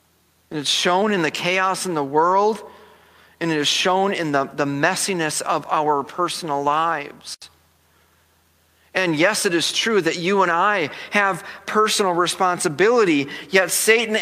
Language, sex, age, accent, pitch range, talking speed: English, male, 40-59, American, 155-215 Hz, 150 wpm